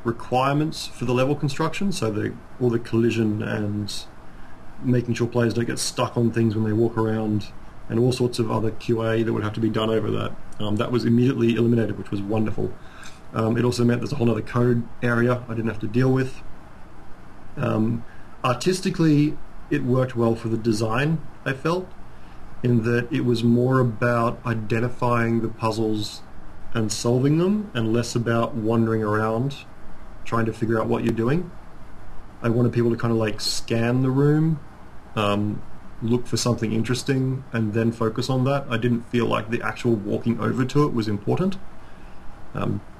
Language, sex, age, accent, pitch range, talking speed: English, male, 30-49, Australian, 110-125 Hz, 175 wpm